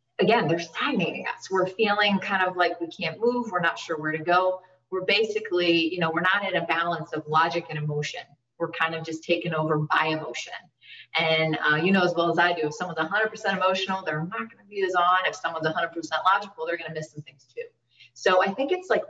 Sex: female